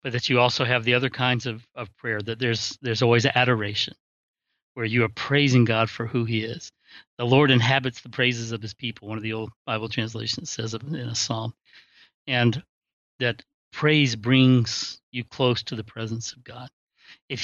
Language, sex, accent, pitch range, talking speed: English, male, American, 120-150 Hz, 190 wpm